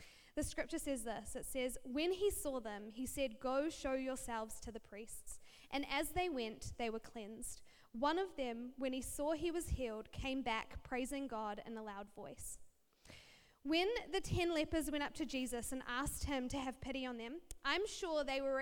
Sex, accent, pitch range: female, Australian, 245-320 Hz